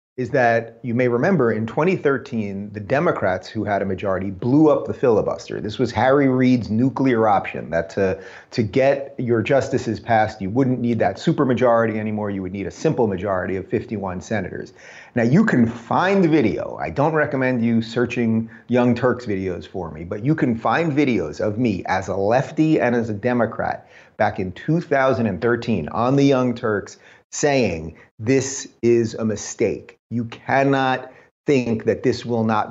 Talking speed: 170 wpm